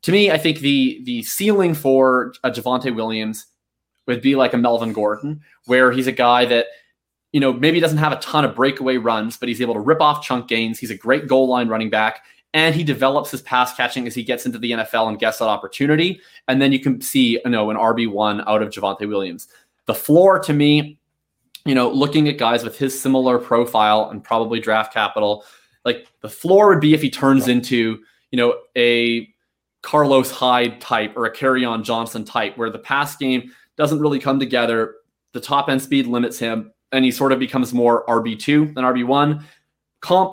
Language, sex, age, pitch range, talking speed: English, male, 20-39, 115-140 Hz, 205 wpm